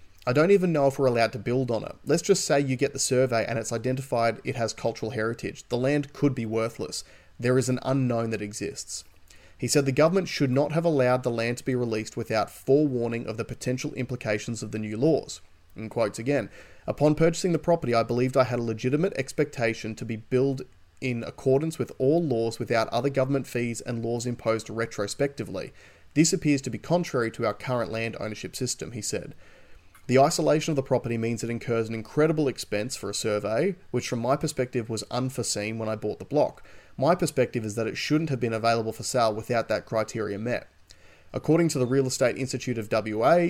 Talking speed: 205 wpm